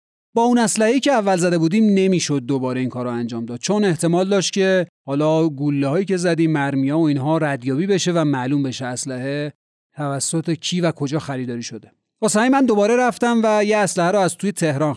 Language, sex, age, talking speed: Persian, male, 30-49, 200 wpm